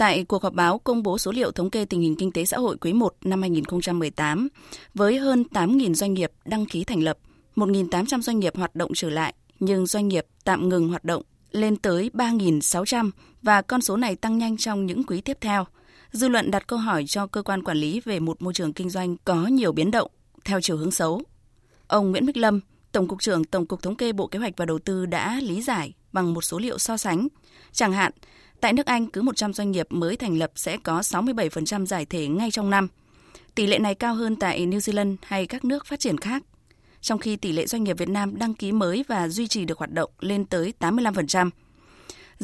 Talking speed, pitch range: 230 wpm, 175-220 Hz